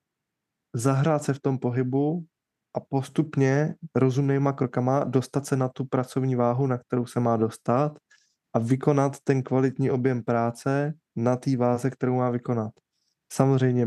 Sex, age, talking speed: male, 20-39, 145 wpm